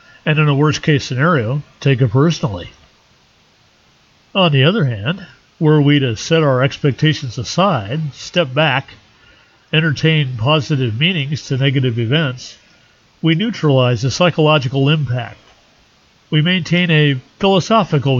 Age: 50-69